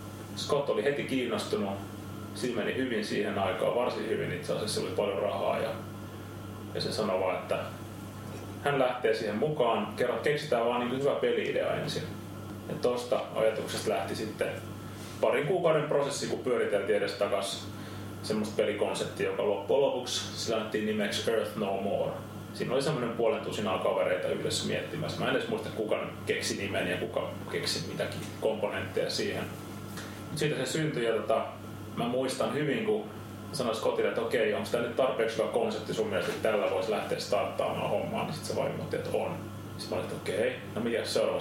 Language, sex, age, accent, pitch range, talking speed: Finnish, male, 30-49, native, 105-150 Hz, 165 wpm